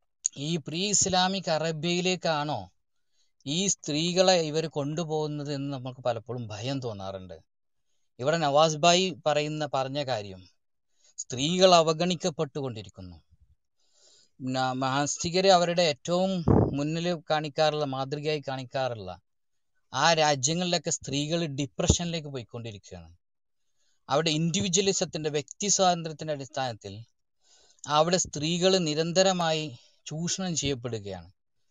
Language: Malayalam